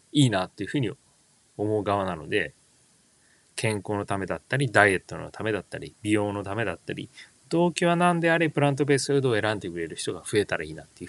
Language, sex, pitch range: Japanese, male, 100-145 Hz